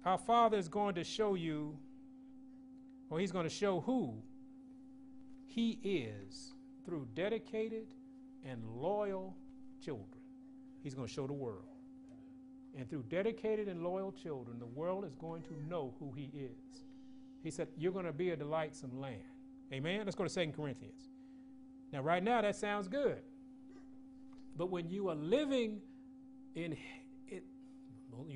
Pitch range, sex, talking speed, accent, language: 165-265 Hz, male, 145 wpm, American, English